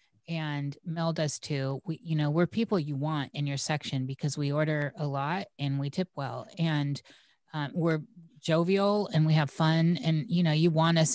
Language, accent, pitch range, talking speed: English, American, 145-175 Hz, 200 wpm